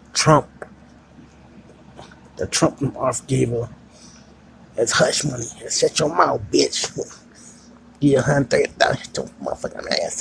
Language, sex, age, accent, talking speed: English, male, 30-49, American, 120 wpm